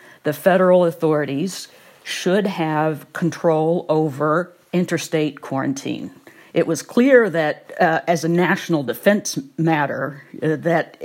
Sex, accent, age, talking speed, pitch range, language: female, American, 50-69, 115 wpm, 155-195 Hz, English